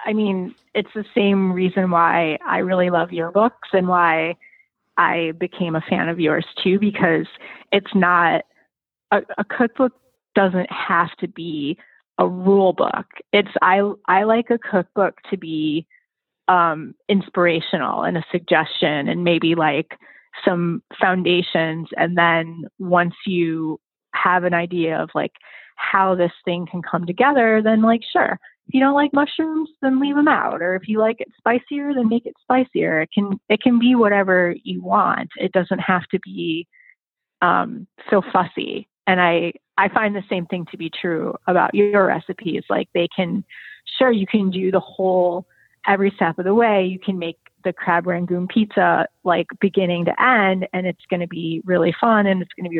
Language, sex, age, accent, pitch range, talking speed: English, female, 20-39, American, 175-210 Hz, 175 wpm